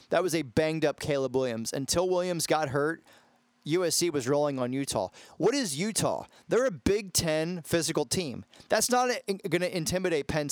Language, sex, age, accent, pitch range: Japanese, male, 30-49, American, 145-180 Hz